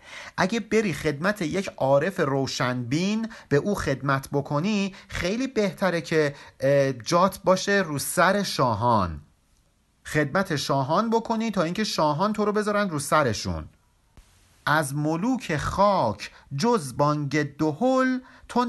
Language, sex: Persian, male